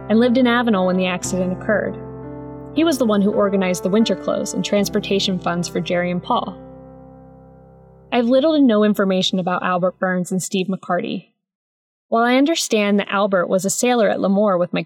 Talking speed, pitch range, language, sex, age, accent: 195 wpm, 190-250 Hz, English, female, 20-39, American